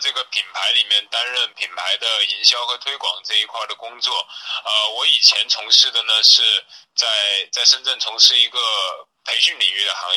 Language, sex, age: Chinese, male, 20-39